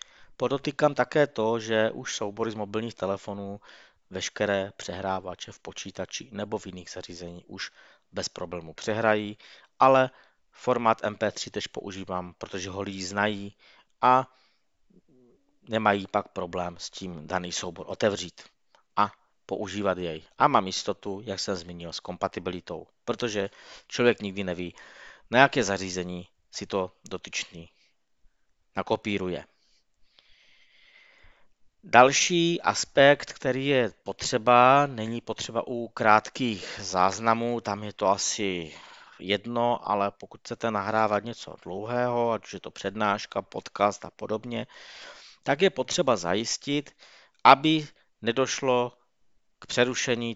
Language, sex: Czech, male